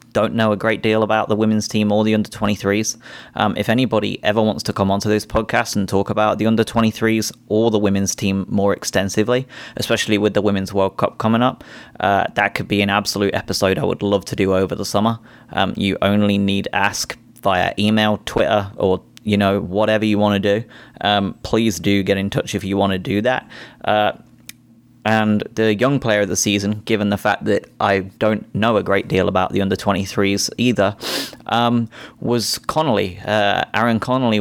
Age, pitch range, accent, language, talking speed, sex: 20-39, 100-115 Hz, British, English, 200 wpm, male